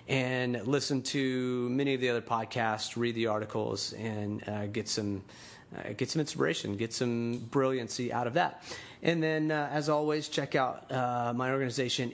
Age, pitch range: 30-49, 115-135 Hz